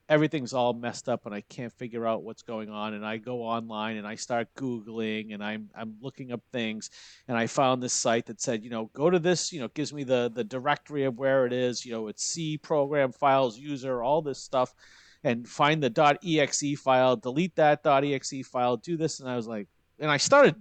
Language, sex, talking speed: English, male, 235 wpm